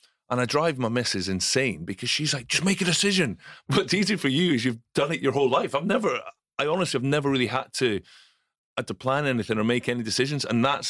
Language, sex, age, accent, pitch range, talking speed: English, male, 30-49, British, 100-130 Hz, 235 wpm